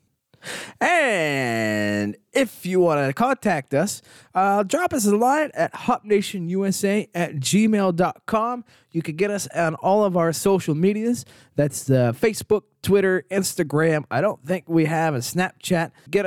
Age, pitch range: 20-39, 150-205 Hz